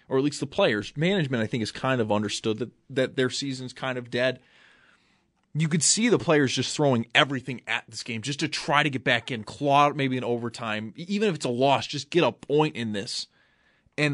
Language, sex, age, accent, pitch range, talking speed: English, male, 30-49, American, 130-170 Hz, 225 wpm